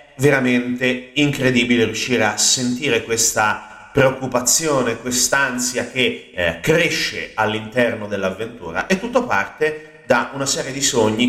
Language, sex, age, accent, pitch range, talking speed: Italian, male, 30-49, native, 105-135 Hz, 110 wpm